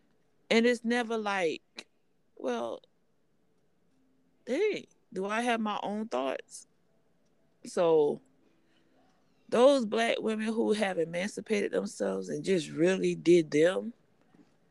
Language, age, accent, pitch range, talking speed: English, 30-49, American, 170-225 Hz, 100 wpm